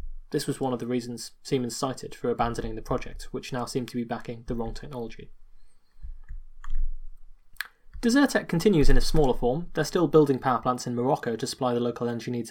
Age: 20-39